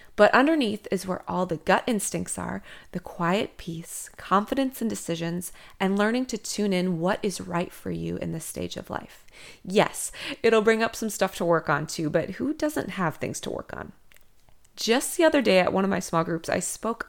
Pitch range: 170-220 Hz